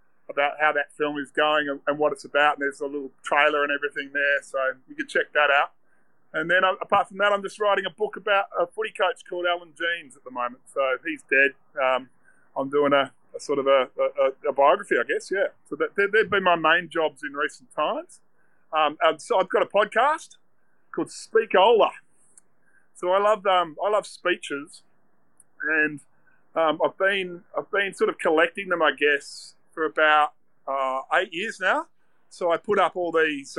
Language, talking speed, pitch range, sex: English, 200 wpm, 145-185 Hz, male